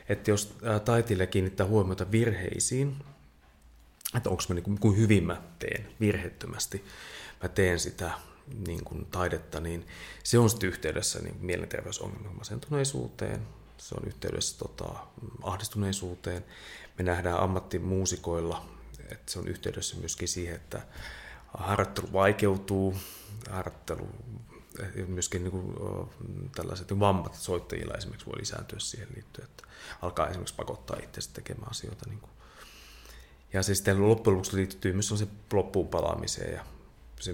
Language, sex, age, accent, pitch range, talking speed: Finnish, male, 30-49, native, 85-105 Hz, 115 wpm